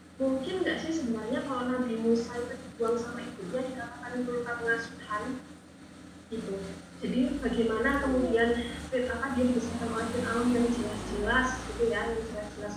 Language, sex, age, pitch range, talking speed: Malay, female, 20-39, 225-260 Hz, 135 wpm